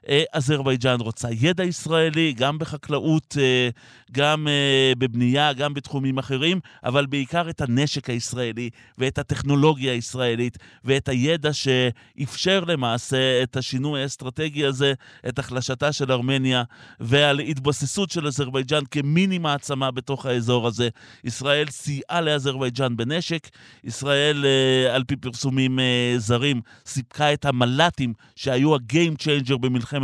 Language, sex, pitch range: Hebrew, male, 125-150 Hz